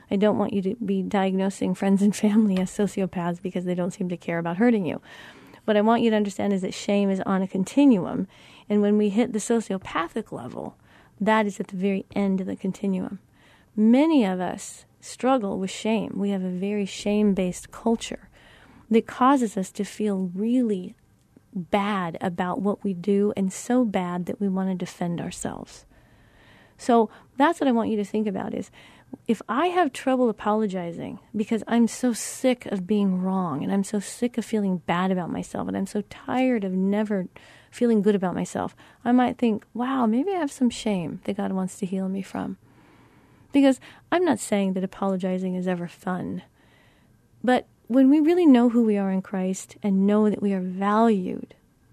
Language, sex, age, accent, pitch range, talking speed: English, female, 30-49, American, 190-230 Hz, 190 wpm